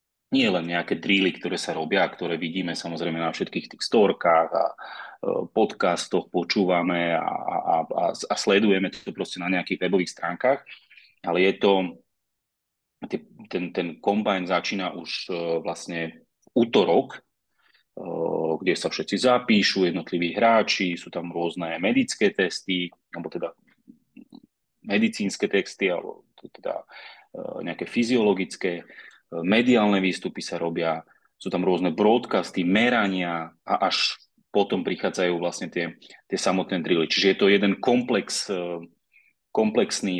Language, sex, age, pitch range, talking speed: Slovak, male, 30-49, 85-100 Hz, 120 wpm